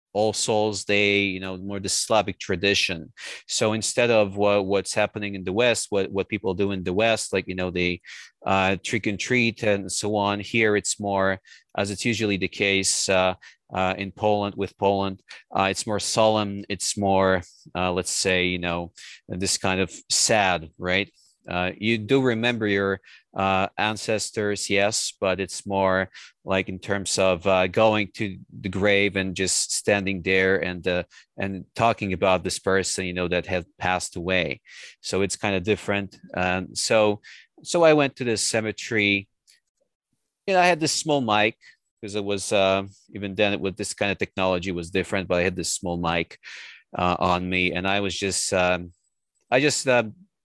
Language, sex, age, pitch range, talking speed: English, male, 40-59, 95-105 Hz, 180 wpm